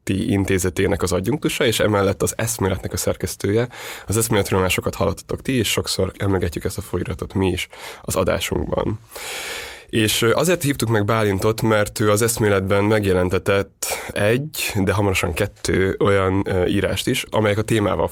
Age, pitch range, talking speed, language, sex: 20-39, 95-110 Hz, 145 wpm, Hungarian, male